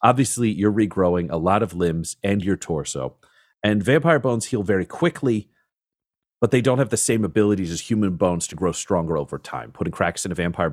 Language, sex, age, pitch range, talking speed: English, male, 40-59, 85-110 Hz, 200 wpm